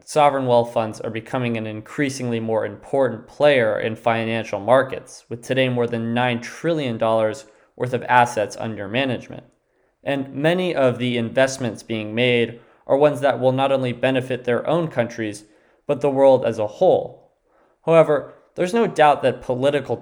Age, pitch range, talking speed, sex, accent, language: 20-39, 115-140 Hz, 160 wpm, male, American, English